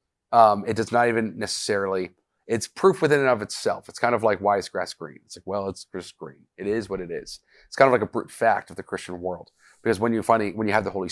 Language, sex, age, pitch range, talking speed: English, male, 30-49, 95-120 Hz, 280 wpm